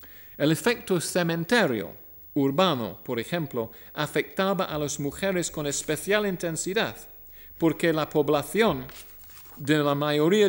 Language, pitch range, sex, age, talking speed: Spanish, 115-160 Hz, male, 50-69, 110 wpm